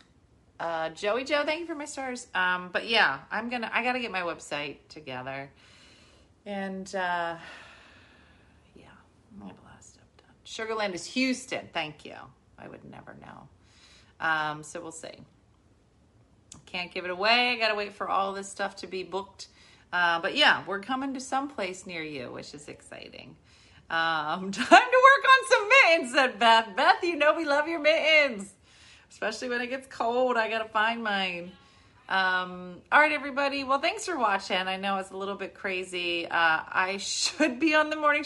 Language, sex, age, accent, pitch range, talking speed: English, female, 40-59, American, 170-255 Hz, 175 wpm